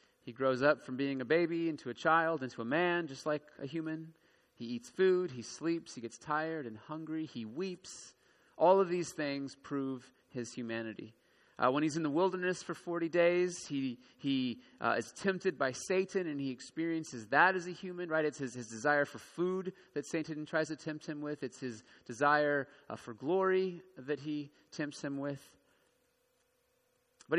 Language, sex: English, male